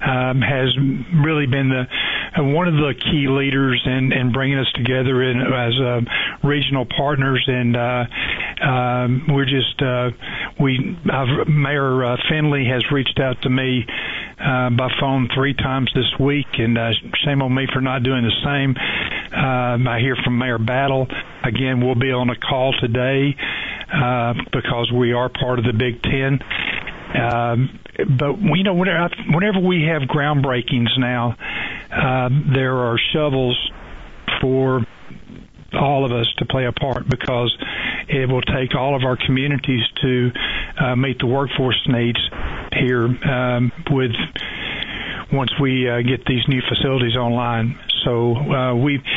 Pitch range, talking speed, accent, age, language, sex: 125-140 Hz, 155 wpm, American, 50-69, English, male